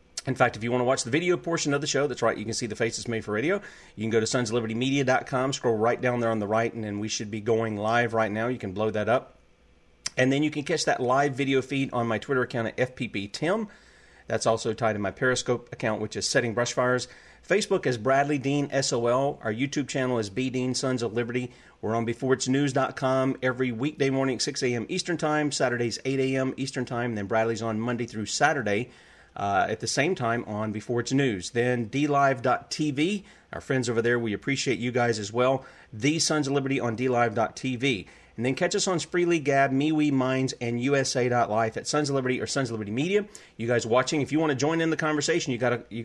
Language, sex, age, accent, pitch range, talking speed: English, male, 30-49, American, 115-140 Hz, 220 wpm